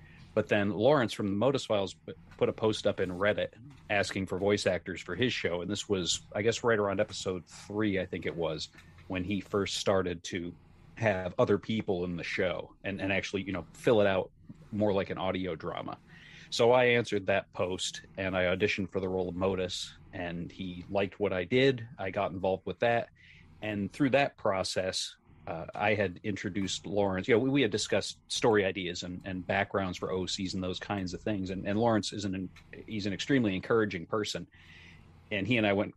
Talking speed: 205 wpm